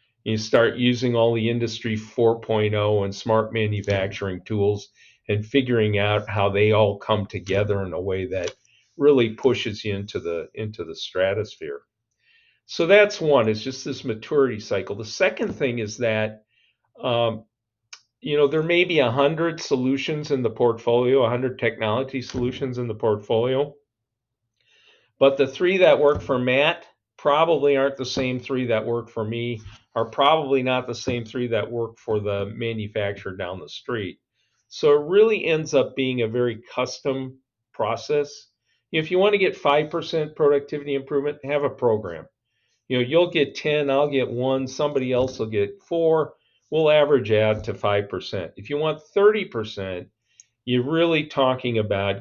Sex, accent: male, American